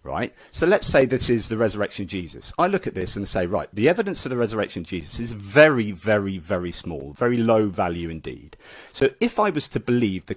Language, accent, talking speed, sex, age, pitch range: English, British, 230 wpm, male, 40-59, 95-135 Hz